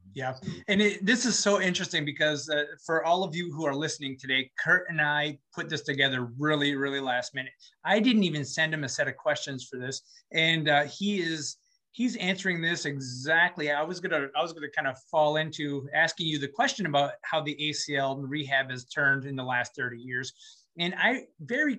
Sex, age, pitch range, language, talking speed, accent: male, 30-49, 140-175 Hz, English, 205 wpm, American